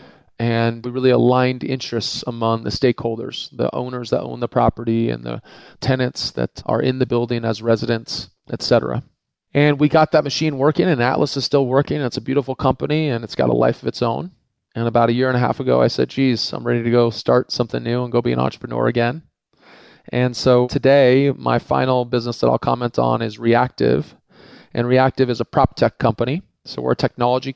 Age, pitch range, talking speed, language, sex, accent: 30-49, 115-135 Hz, 210 wpm, English, male, American